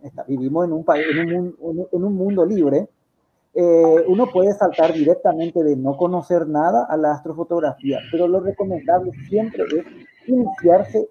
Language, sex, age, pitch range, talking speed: Spanish, male, 40-59, 150-210 Hz, 155 wpm